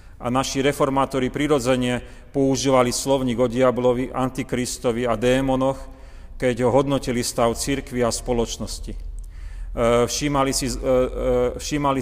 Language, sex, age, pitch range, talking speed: Slovak, male, 40-59, 115-135 Hz, 95 wpm